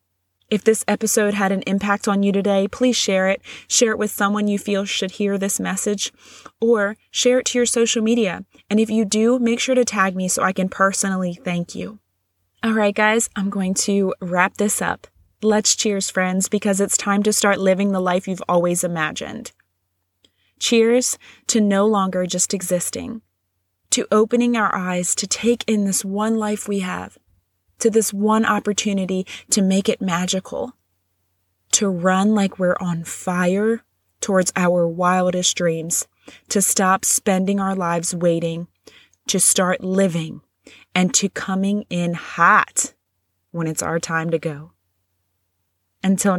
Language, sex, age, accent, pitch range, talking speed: English, female, 20-39, American, 170-210 Hz, 160 wpm